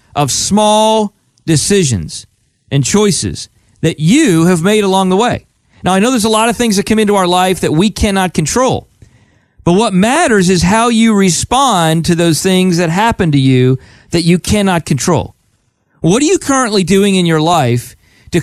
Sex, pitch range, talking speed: male, 150-215 Hz, 180 wpm